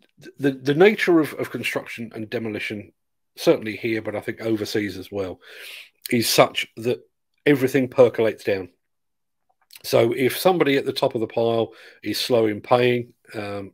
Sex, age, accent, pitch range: male, 40-59, British, 105-130 Hz